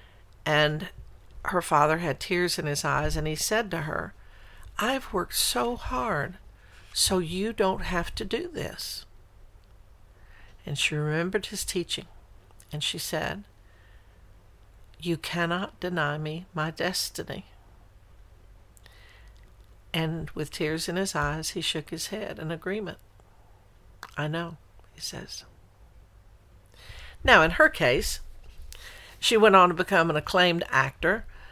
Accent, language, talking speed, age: American, English, 125 wpm, 60-79